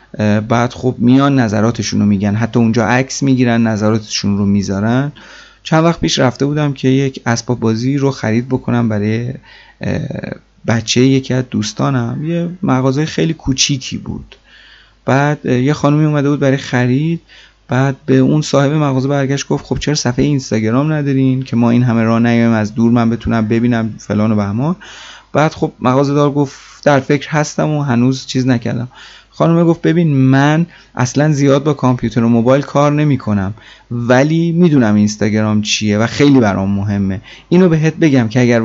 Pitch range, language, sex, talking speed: 110-140 Hz, Persian, male, 160 wpm